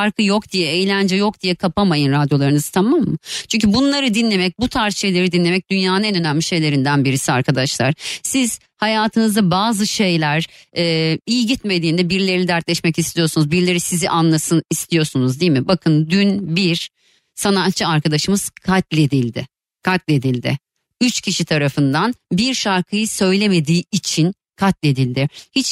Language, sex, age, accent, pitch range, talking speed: Turkish, female, 30-49, native, 165-225 Hz, 130 wpm